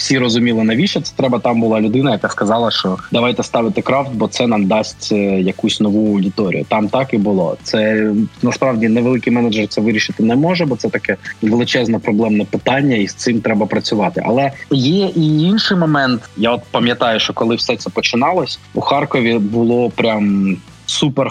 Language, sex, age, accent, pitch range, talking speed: Ukrainian, male, 20-39, native, 105-125 Hz, 175 wpm